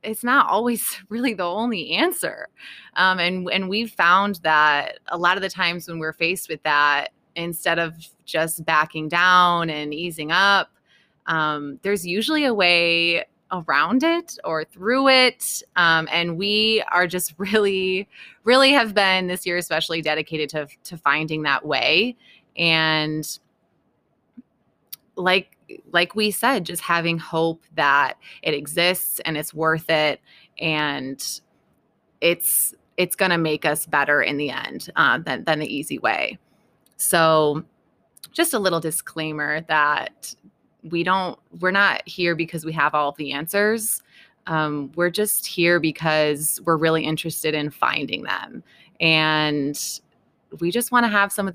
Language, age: English, 20-39